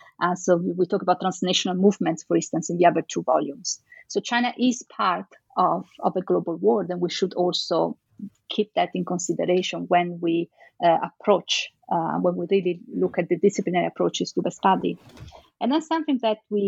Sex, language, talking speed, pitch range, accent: female, English, 185 wpm, 180-220 Hz, Italian